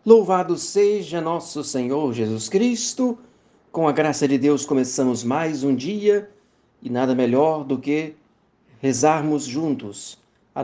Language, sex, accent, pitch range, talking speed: Portuguese, male, Brazilian, 125-165 Hz, 130 wpm